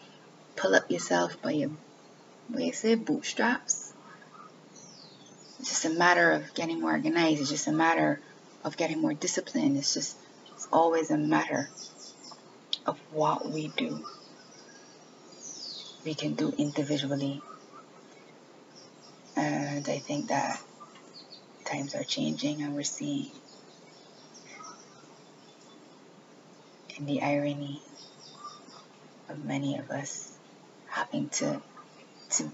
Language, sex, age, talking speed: English, female, 20-39, 110 wpm